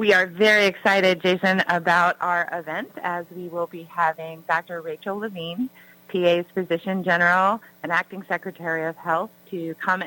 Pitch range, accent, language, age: 165-185 Hz, American, English, 30-49